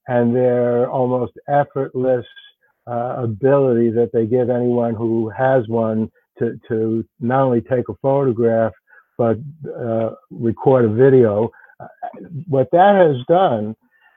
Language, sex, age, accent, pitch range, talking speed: English, male, 60-79, American, 120-145 Hz, 125 wpm